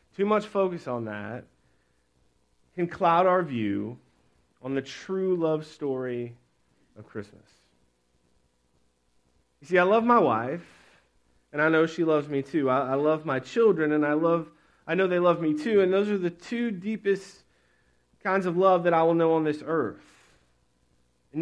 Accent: American